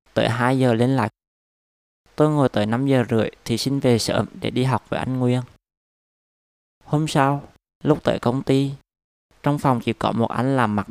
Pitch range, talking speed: 105-130 Hz, 195 wpm